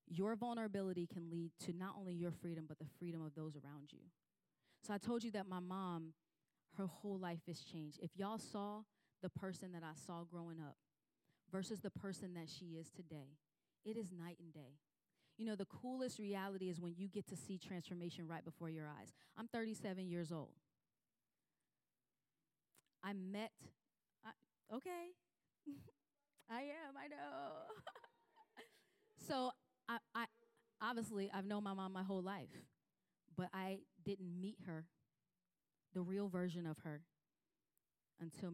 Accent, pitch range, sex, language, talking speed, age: American, 165-205 Hz, female, English, 155 wpm, 30-49